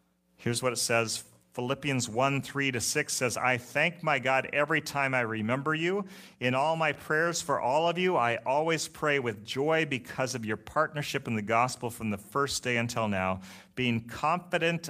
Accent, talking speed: American, 190 wpm